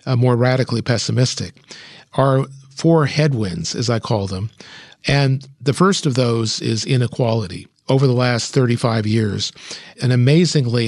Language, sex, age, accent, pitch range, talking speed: English, male, 50-69, American, 115-140 Hz, 130 wpm